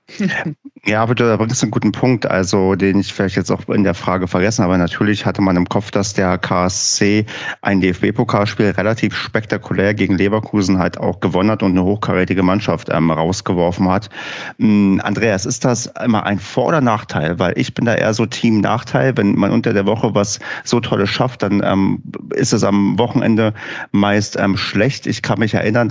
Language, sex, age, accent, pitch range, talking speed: German, male, 40-59, German, 95-115 Hz, 185 wpm